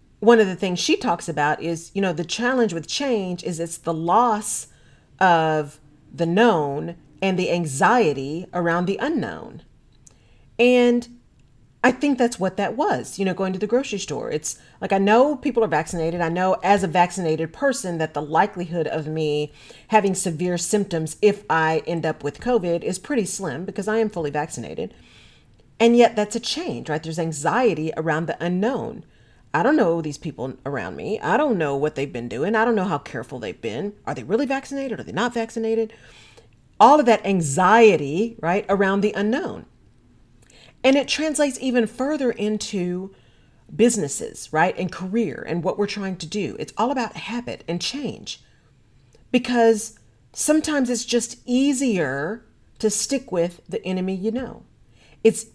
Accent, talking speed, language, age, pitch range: American, 170 wpm, English, 40-59, 160-230 Hz